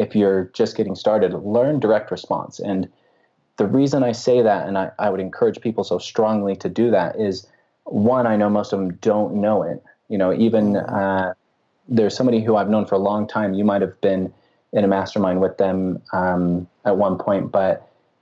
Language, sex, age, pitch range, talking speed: English, male, 30-49, 100-125 Hz, 200 wpm